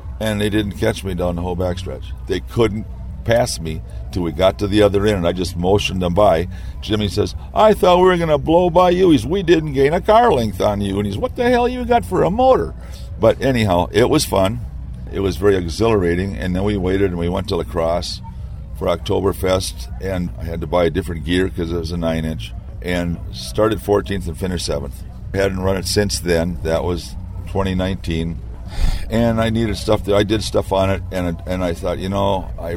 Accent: American